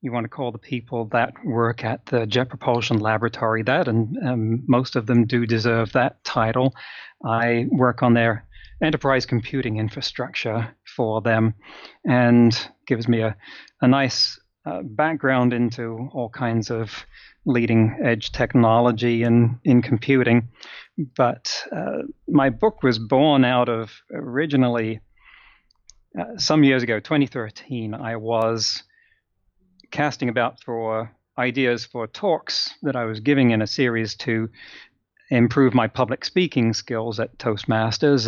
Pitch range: 115-130 Hz